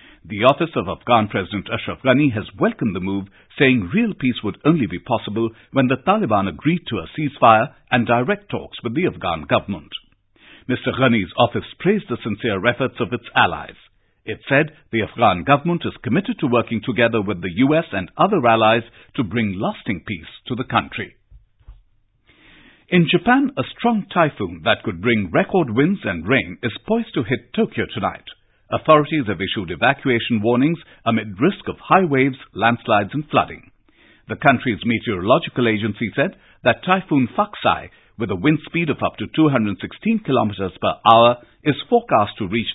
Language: English